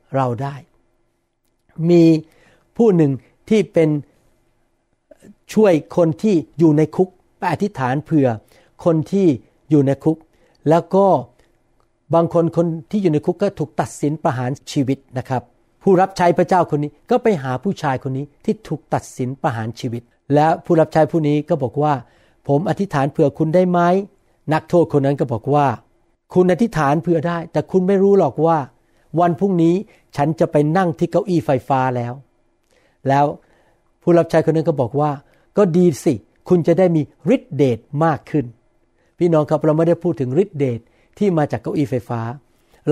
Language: Thai